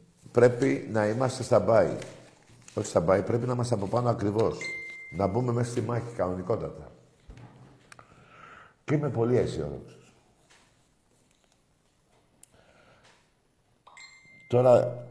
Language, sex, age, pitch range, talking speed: Greek, male, 60-79, 90-125 Hz, 100 wpm